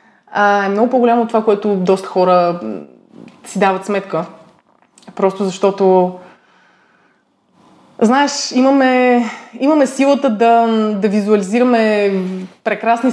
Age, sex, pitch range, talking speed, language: 20-39, female, 195-230 Hz, 95 wpm, Bulgarian